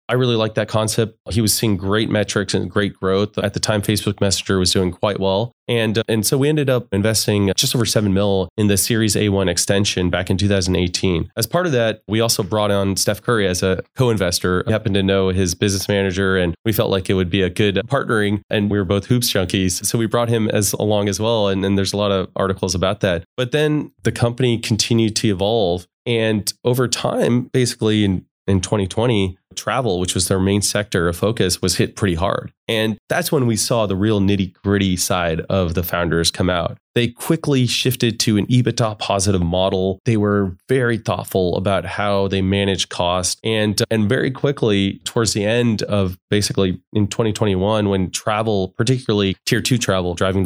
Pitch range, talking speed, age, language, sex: 95-115 Hz, 200 wpm, 20-39, English, male